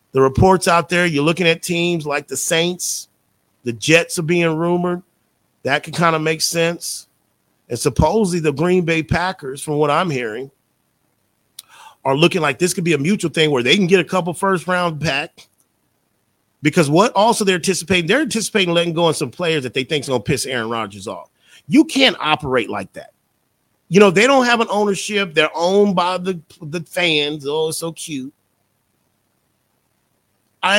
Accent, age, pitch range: American, 40-59, 140-185 Hz